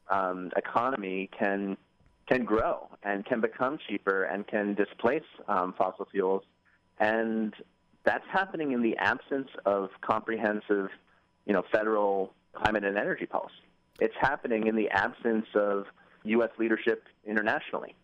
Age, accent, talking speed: 30-49, American, 130 wpm